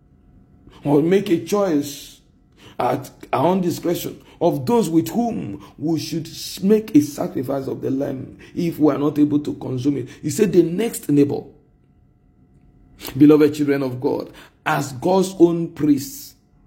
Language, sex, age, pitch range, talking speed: English, male, 50-69, 145-190 Hz, 150 wpm